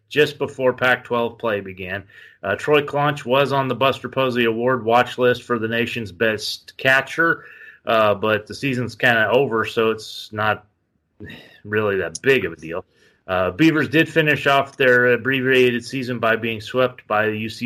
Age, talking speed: 30-49, 175 wpm